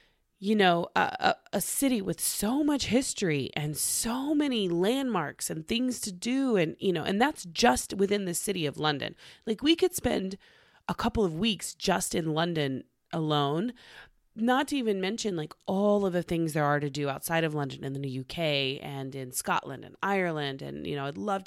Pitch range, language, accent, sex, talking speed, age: 145-200 Hz, English, American, female, 195 wpm, 30-49